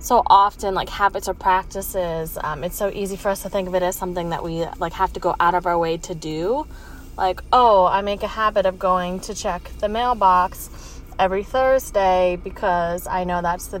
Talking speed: 215 wpm